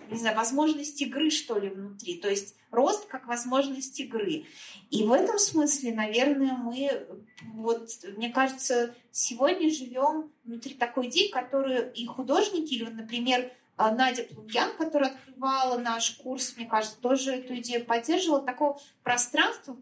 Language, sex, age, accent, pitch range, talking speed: Russian, female, 30-49, native, 230-290 Hz, 140 wpm